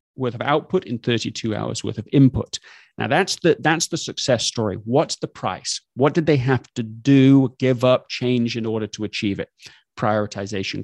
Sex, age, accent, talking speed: male, 30-49, British, 190 wpm